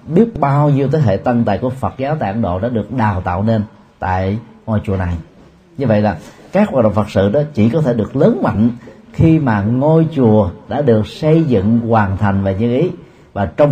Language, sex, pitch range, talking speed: Vietnamese, male, 100-130 Hz, 225 wpm